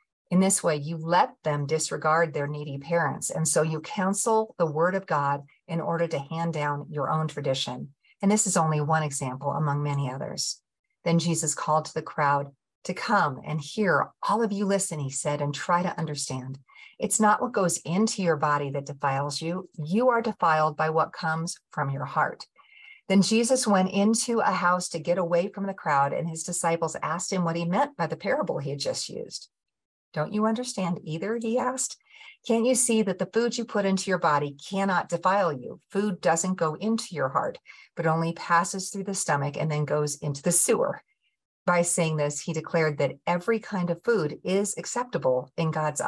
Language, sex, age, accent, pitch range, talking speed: English, female, 50-69, American, 150-200 Hz, 200 wpm